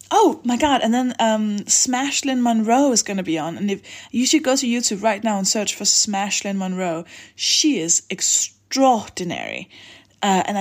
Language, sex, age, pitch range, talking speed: English, female, 20-39, 175-230 Hz, 190 wpm